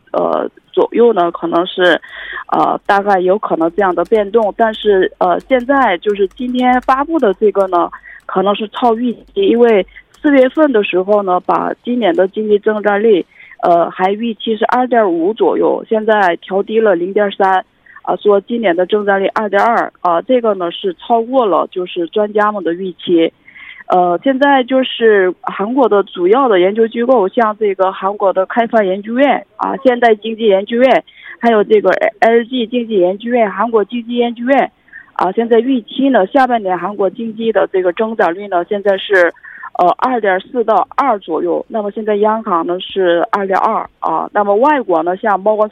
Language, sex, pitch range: Korean, female, 190-235 Hz